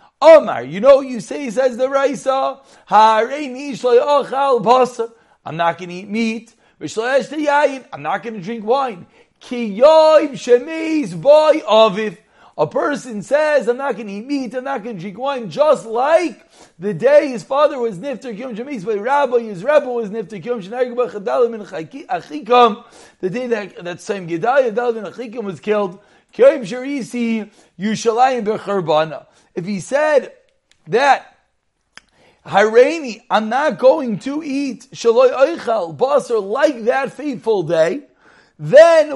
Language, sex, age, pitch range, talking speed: English, male, 40-59, 220-275 Hz, 160 wpm